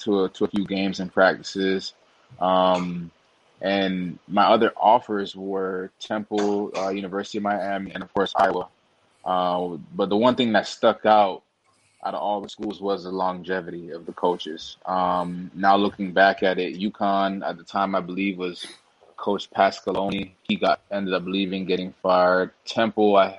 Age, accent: 20-39, American